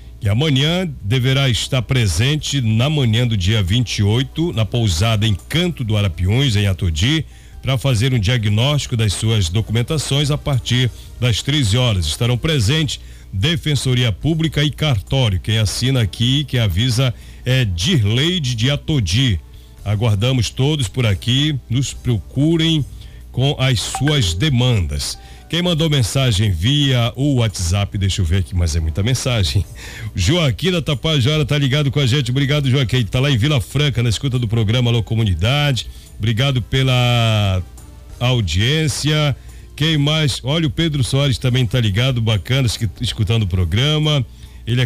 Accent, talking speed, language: Brazilian, 145 wpm, Portuguese